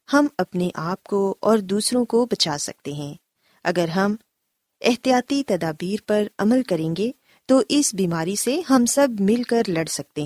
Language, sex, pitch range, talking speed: Urdu, female, 175-245 Hz, 165 wpm